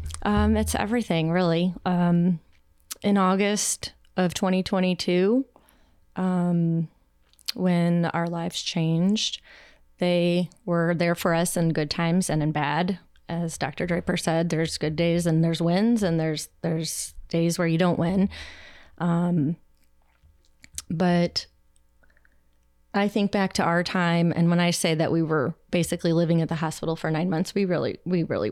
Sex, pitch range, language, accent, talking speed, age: female, 160-185 Hz, English, American, 145 wpm, 30-49